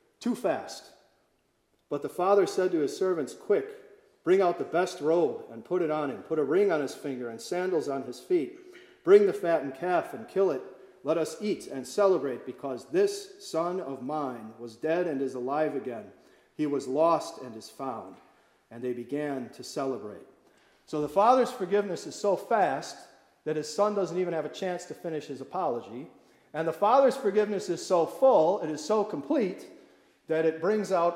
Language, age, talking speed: English, 40-59, 190 wpm